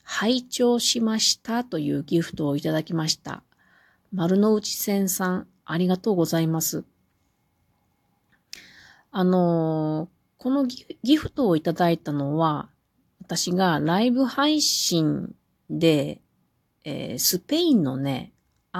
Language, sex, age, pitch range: Japanese, female, 40-59, 155-220 Hz